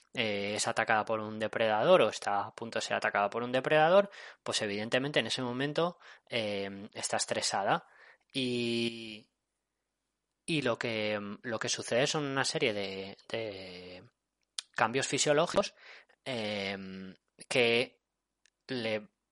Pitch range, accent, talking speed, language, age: 100-130 Hz, Spanish, 125 wpm, Spanish, 20-39